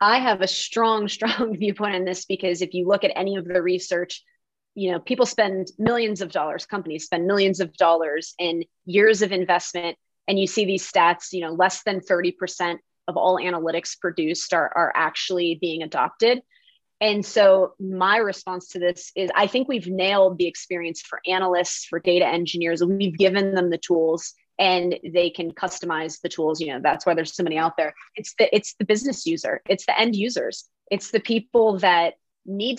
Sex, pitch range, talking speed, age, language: female, 175-205 Hz, 195 wpm, 30-49, English